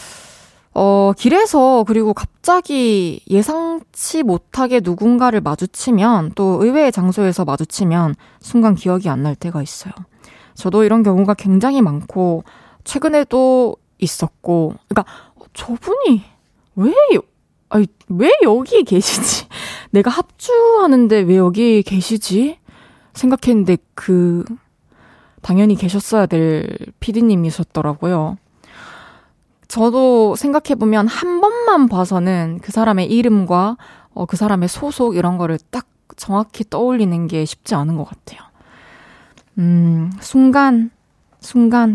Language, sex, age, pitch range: Korean, female, 20-39, 180-245 Hz